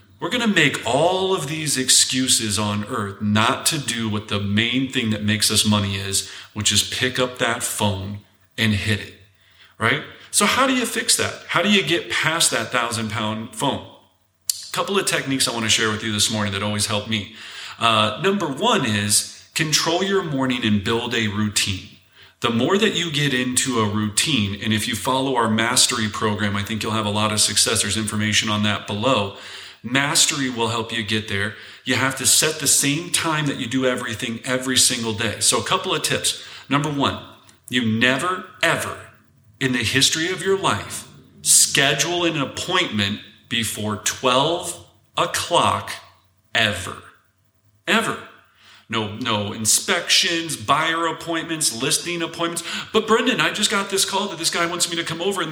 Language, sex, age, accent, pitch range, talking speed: English, male, 30-49, American, 105-160 Hz, 185 wpm